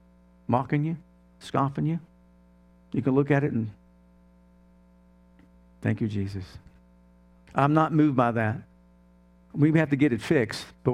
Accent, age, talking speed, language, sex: American, 50-69, 135 wpm, English, male